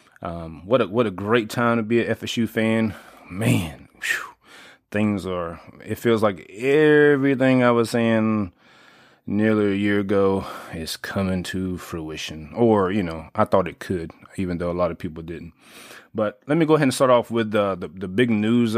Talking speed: 180 wpm